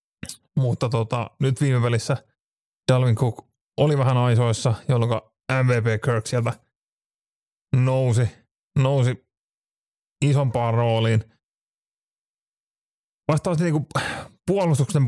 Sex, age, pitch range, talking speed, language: male, 30-49, 115-130 Hz, 85 wpm, Finnish